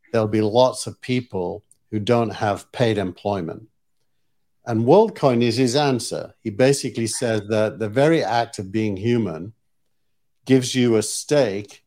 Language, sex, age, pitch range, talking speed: English, male, 50-69, 105-125 Hz, 145 wpm